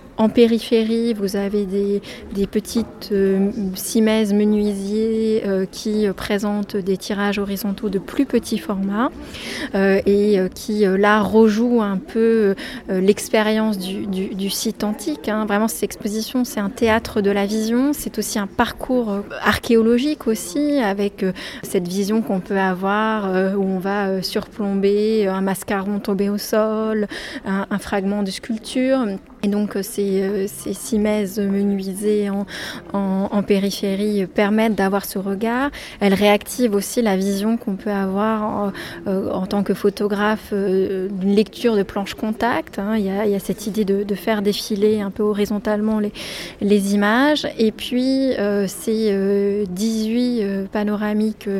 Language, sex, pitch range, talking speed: French, female, 200-220 Hz, 140 wpm